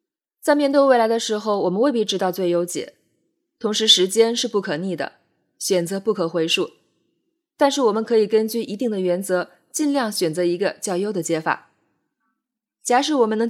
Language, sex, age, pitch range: Chinese, female, 20-39, 180-235 Hz